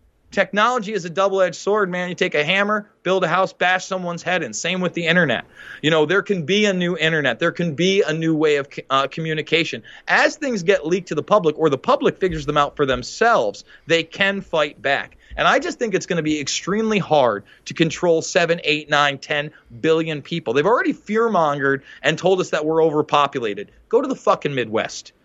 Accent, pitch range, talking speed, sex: American, 160-205 Hz, 210 wpm, male